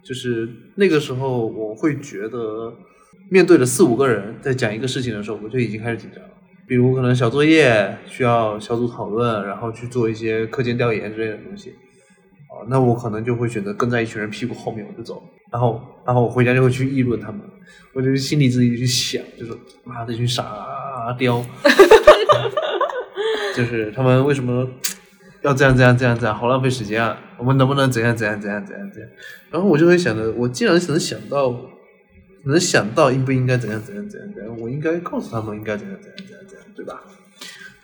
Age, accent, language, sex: 20-39, native, Chinese, male